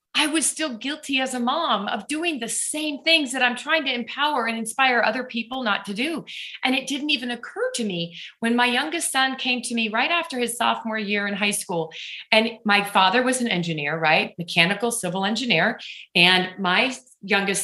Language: English